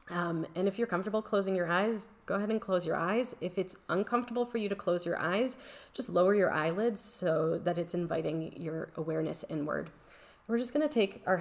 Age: 30-49